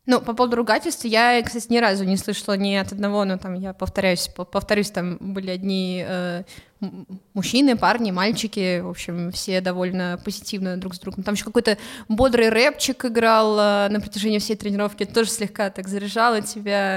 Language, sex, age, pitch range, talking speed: Russian, female, 20-39, 190-225 Hz, 175 wpm